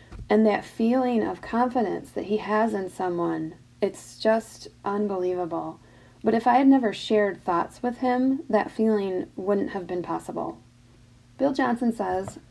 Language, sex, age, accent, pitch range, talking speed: English, female, 40-59, American, 180-230 Hz, 150 wpm